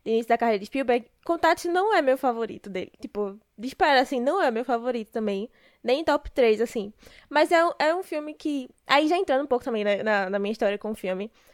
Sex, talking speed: female, 230 wpm